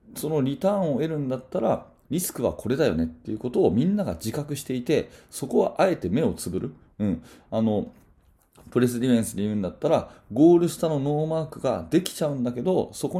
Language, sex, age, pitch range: Japanese, male, 30-49, 105-155 Hz